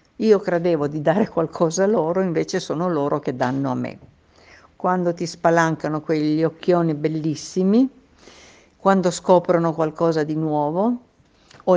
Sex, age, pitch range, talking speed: female, 60-79, 150-190 Hz, 135 wpm